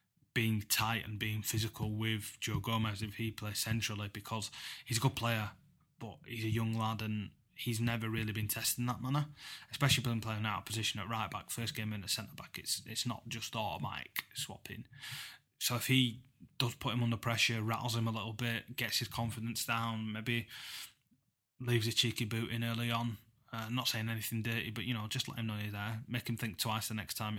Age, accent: 20-39, British